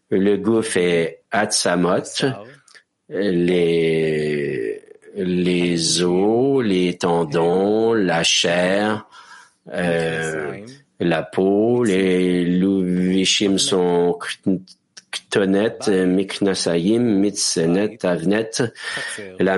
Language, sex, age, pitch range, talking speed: English, male, 50-69, 90-110 Hz, 65 wpm